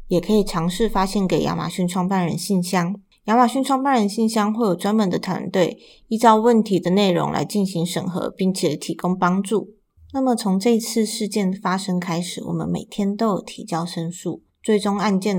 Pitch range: 180-220 Hz